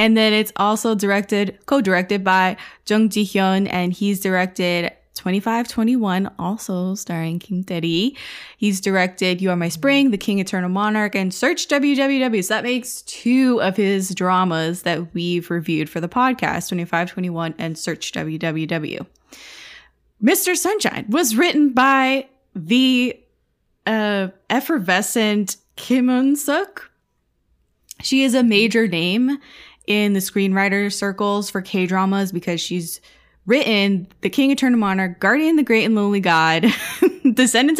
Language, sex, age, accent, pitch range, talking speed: English, female, 20-39, American, 180-240 Hz, 130 wpm